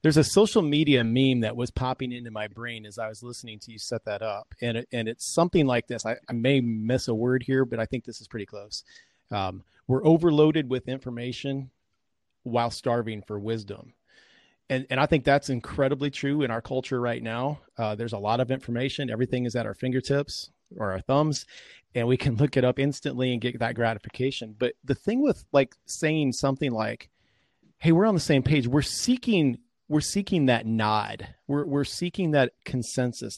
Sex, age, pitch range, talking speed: male, 30-49, 115-140 Hz, 200 wpm